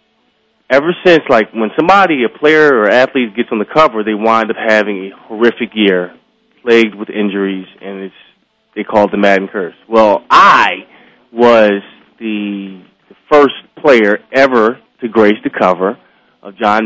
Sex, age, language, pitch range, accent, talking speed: male, 20-39, English, 105-130 Hz, American, 160 wpm